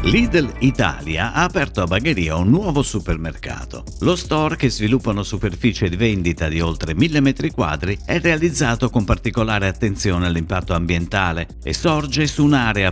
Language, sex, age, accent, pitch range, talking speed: Italian, male, 50-69, native, 85-135 Hz, 155 wpm